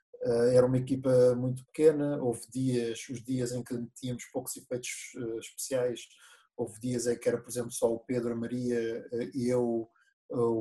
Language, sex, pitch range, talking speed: English, male, 120-135 Hz, 185 wpm